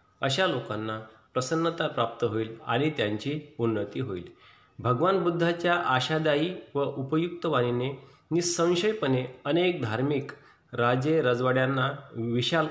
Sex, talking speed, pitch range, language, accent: male, 100 wpm, 125-160 Hz, Marathi, native